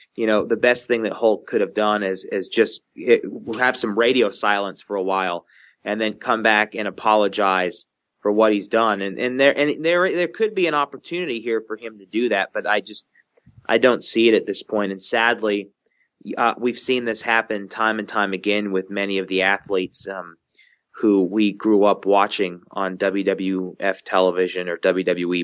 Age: 20-39